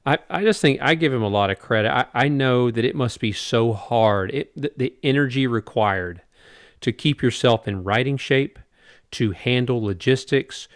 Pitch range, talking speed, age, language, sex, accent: 105-125 Hz, 190 wpm, 40-59, English, male, American